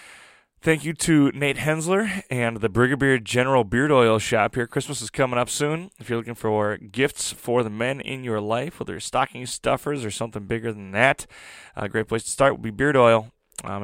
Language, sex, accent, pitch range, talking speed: English, male, American, 105-130 Hz, 215 wpm